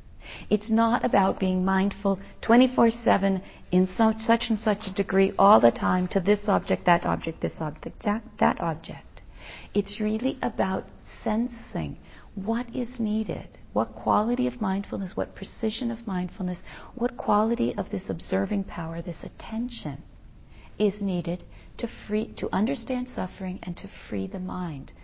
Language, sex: English, female